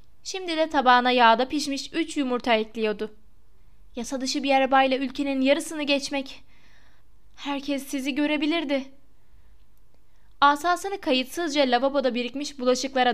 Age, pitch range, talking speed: 10-29, 220-285 Hz, 100 wpm